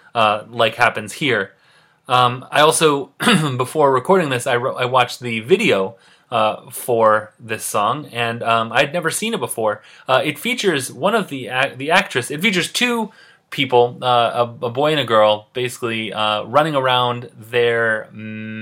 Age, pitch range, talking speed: 30-49, 110-130 Hz, 170 wpm